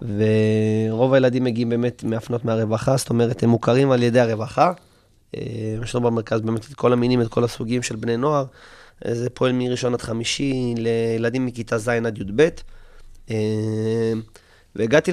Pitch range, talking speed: 115-135 Hz, 145 wpm